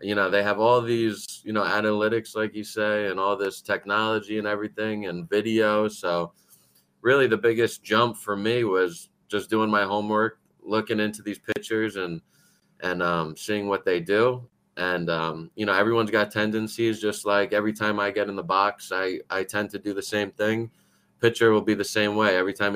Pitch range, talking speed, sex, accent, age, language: 95-110 Hz, 200 wpm, male, American, 20-39, English